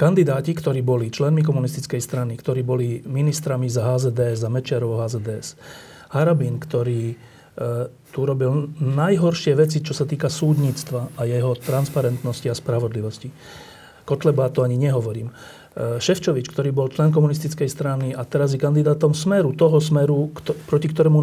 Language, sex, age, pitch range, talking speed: Slovak, male, 40-59, 125-155 Hz, 145 wpm